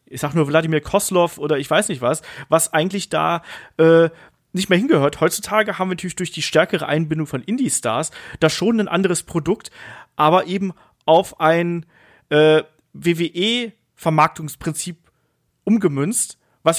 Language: German